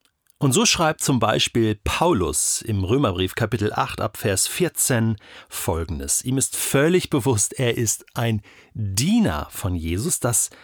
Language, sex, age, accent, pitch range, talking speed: German, male, 40-59, German, 110-165 Hz, 135 wpm